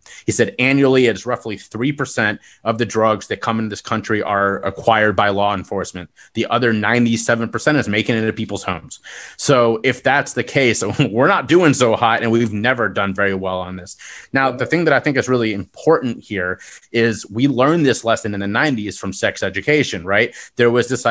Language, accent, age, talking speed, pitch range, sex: English, American, 30-49, 200 wpm, 105-130 Hz, male